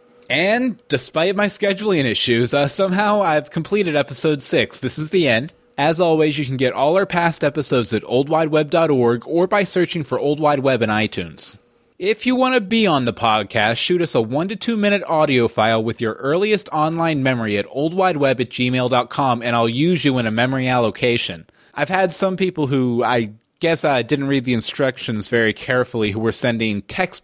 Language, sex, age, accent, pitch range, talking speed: English, male, 20-39, American, 120-180 Hz, 190 wpm